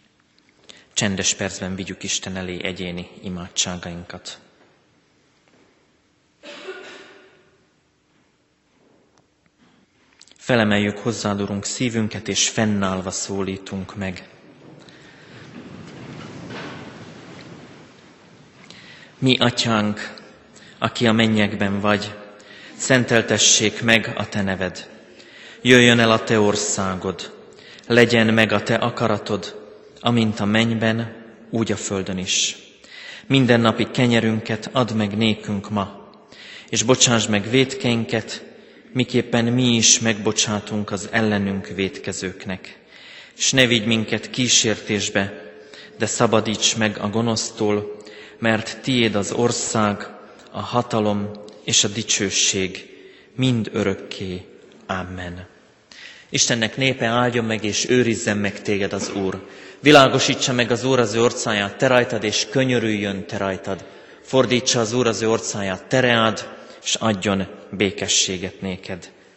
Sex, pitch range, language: male, 100-115 Hz, Hungarian